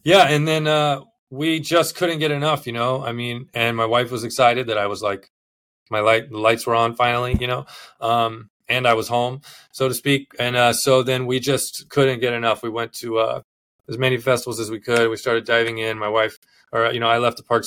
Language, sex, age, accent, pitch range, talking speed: English, male, 20-39, American, 110-130 Hz, 240 wpm